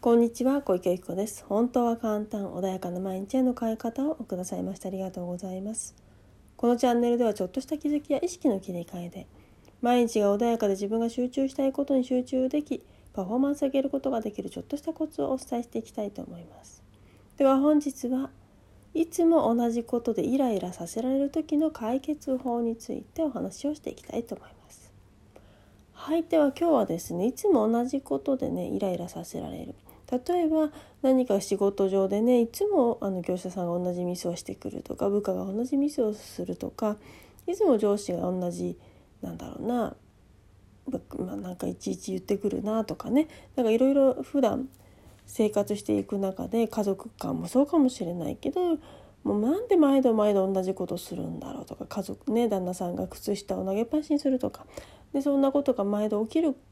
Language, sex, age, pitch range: Japanese, female, 30-49, 195-275 Hz